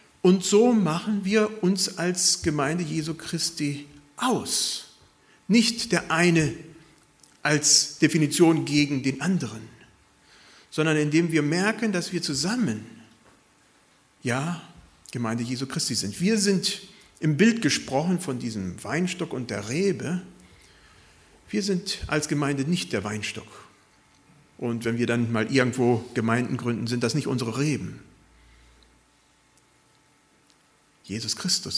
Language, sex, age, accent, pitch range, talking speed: German, male, 40-59, German, 125-195 Hz, 115 wpm